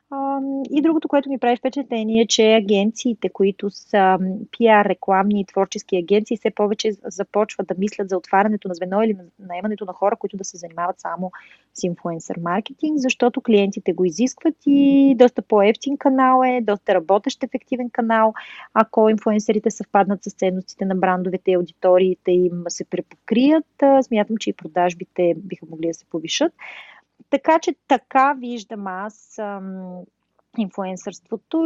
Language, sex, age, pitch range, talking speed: Bulgarian, female, 30-49, 185-245 Hz, 145 wpm